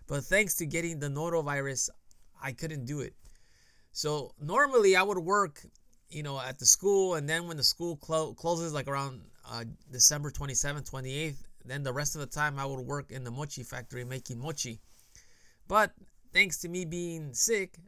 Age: 20-39